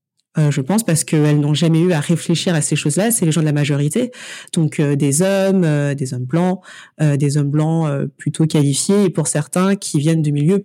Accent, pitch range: French, 155-185 Hz